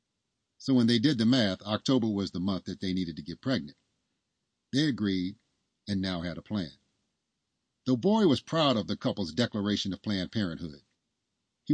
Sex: male